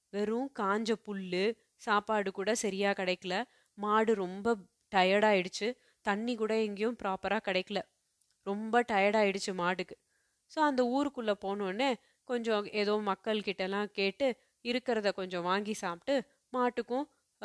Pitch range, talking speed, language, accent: 195-240 Hz, 115 wpm, Tamil, native